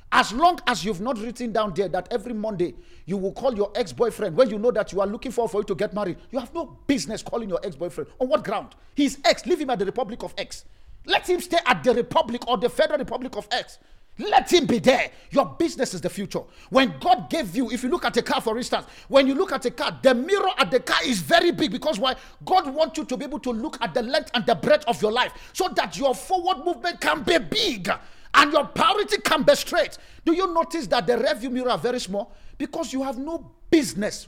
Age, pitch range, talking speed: 50-69, 180-280 Hz, 250 wpm